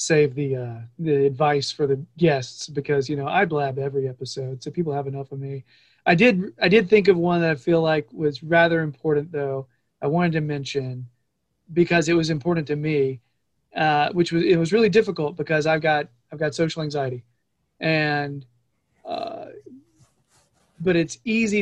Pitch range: 145-180 Hz